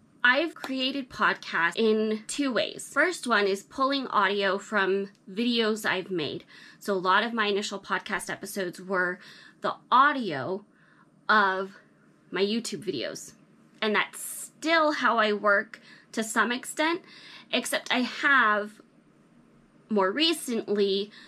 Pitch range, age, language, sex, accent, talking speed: 195-250 Hz, 20-39, English, female, American, 125 wpm